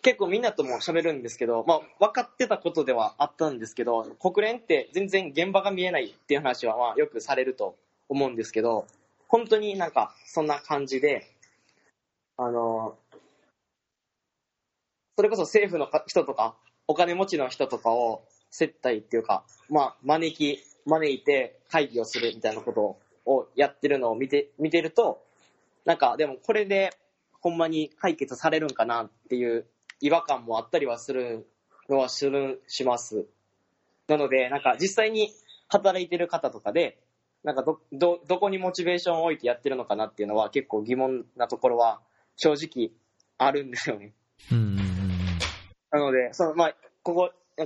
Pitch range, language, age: 120-180 Hz, Japanese, 20-39